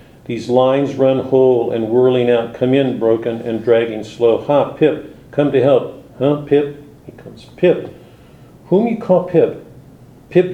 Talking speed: 160 wpm